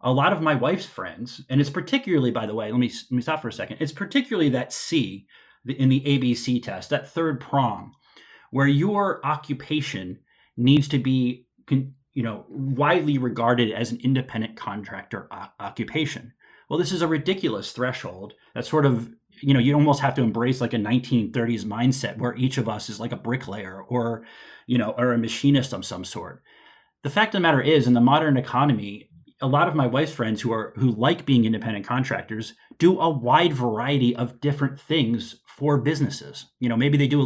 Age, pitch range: 30-49, 120-145 Hz